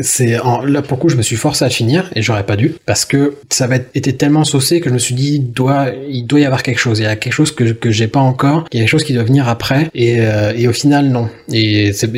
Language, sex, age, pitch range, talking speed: French, male, 20-39, 115-140 Hz, 305 wpm